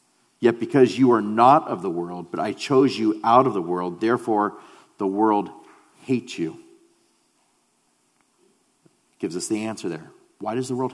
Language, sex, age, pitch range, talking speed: English, male, 40-59, 105-125 Hz, 165 wpm